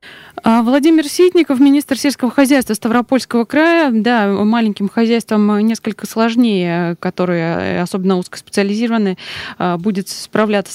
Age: 20-39